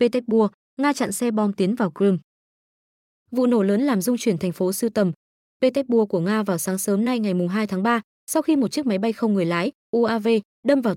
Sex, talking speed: female, 225 wpm